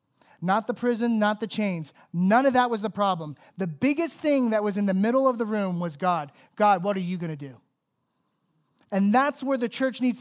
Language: English